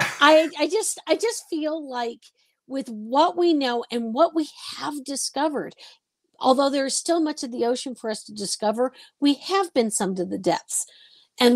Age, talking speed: 50-69, 185 wpm